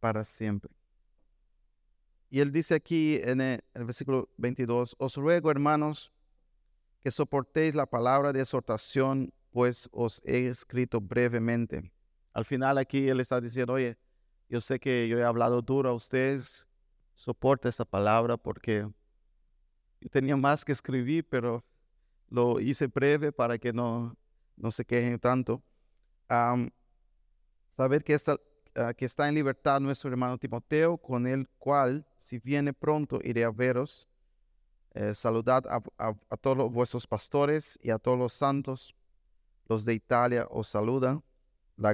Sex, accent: male, Venezuelan